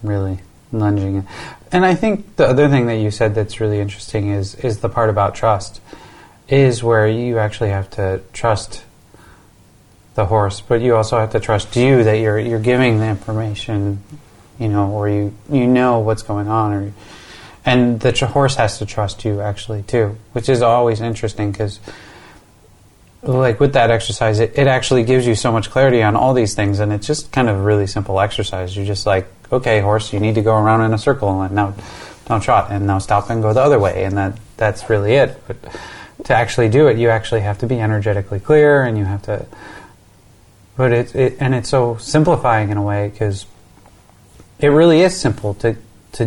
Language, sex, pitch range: English, male, 100-120 Hz